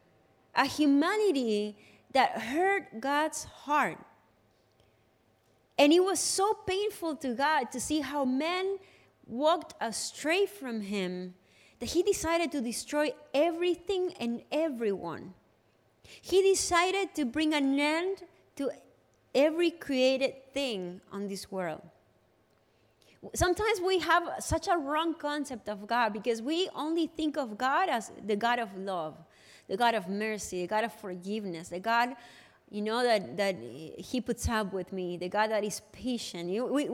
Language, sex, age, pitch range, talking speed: English, female, 20-39, 200-305 Hz, 140 wpm